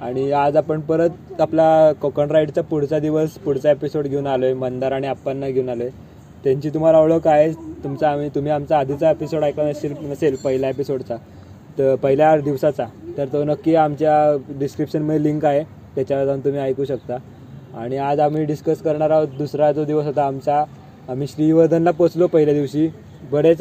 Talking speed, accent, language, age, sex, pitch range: 175 wpm, native, Marathi, 20-39, male, 135-160 Hz